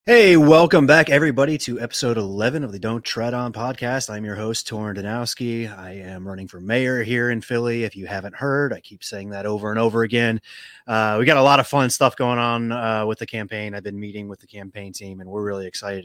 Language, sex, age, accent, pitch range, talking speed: English, male, 30-49, American, 105-135 Hz, 235 wpm